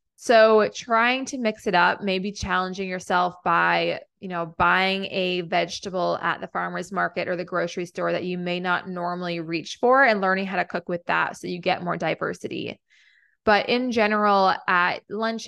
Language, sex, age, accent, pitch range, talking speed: English, female, 20-39, American, 180-210 Hz, 180 wpm